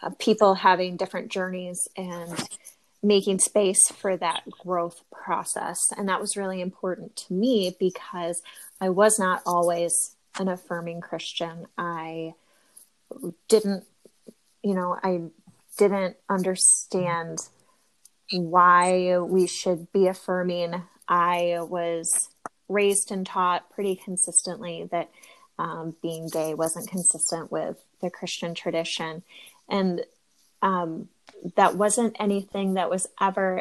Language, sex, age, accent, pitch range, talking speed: English, female, 20-39, American, 175-195 Hz, 110 wpm